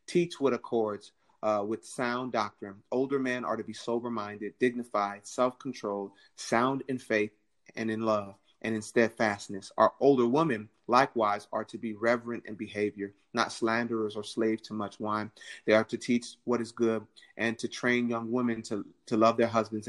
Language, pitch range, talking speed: English, 105-120 Hz, 180 wpm